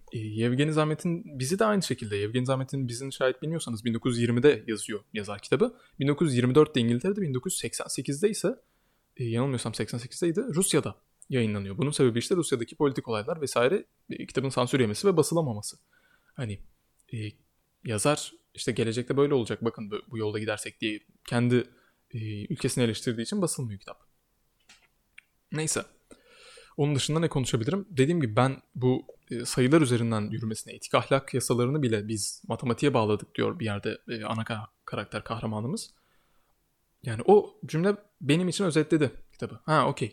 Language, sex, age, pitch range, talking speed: Turkish, male, 20-39, 115-145 Hz, 135 wpm